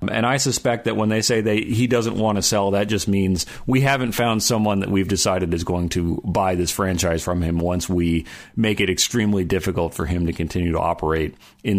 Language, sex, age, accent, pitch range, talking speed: English, male, 40-59, American, 90-115 Hz, 225 wpm